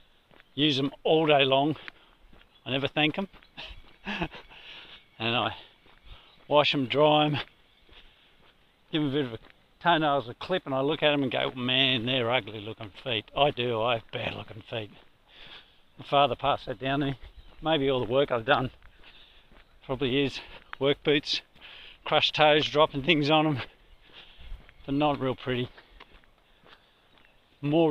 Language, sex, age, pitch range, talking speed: English, male, 50-69, 125-150 Hz, 150 wpm